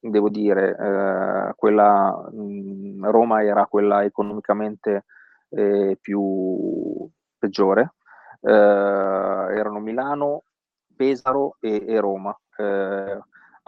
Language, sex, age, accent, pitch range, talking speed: Italian, male, 30-49, native, 100-110 Hz, 85 wpm